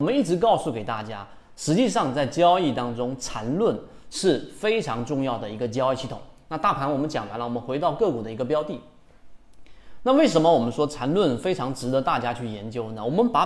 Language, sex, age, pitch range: Chinese, male, 30-49, 120-175 Hz